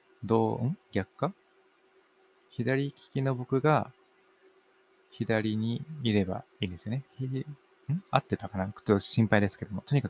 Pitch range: 95-130 Hz